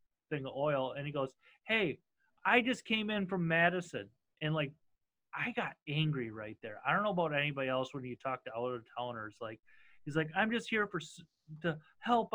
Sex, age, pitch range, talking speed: male, 30-49, 135-185 Hz, 195 wpm